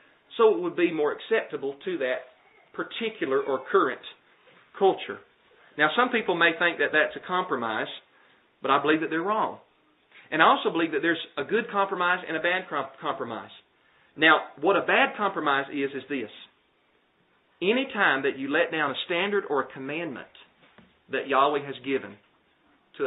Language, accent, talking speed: English, American, 165 wpm